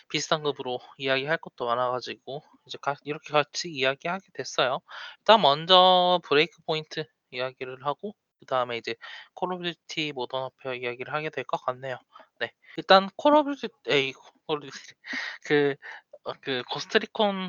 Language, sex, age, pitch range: Korean, male, 20-39, 135-190 Hz